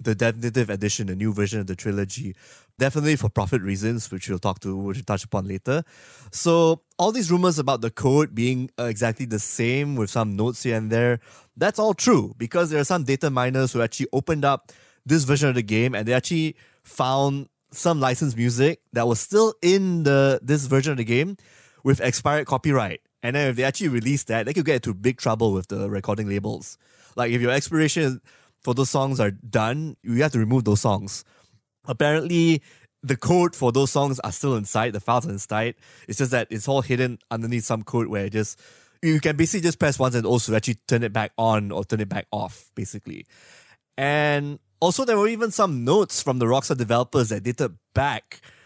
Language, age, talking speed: English, 20-39, 205 wpm